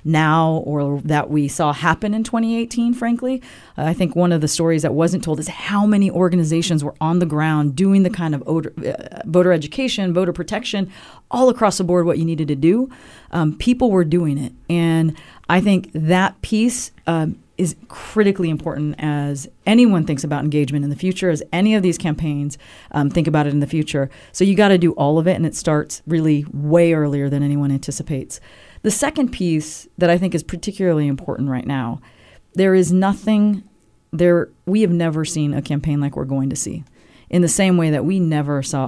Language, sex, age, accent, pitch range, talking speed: English, female, 40-59, American, 145-180 Hz, 200 wpm